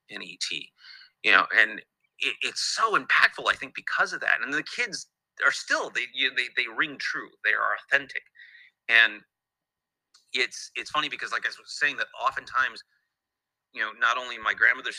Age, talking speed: 30-49, 180 wpm